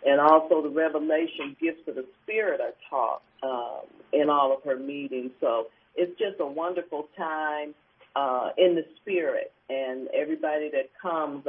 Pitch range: 135-175 Hz